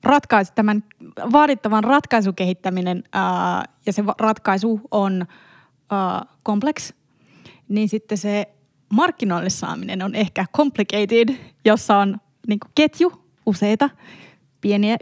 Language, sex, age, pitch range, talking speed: Finnish, female, 20-39, 190-250 Hz, 80 wpm